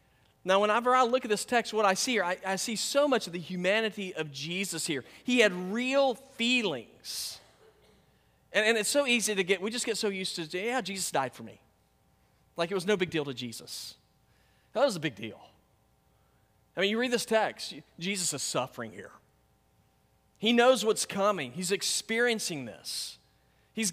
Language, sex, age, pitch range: English, male, 40-59, 170-230 Hz